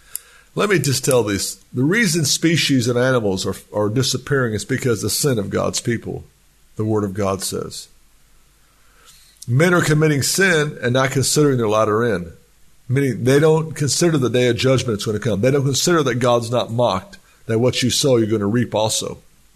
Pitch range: 125-155 Hz